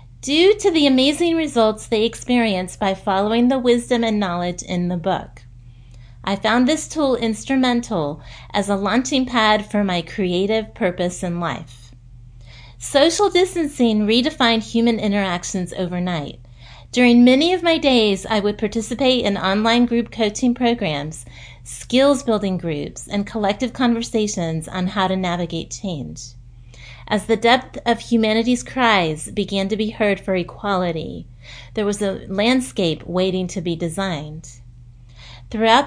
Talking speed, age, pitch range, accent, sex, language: 135 wpm, 30-49, 175-240 Hz, American, female, English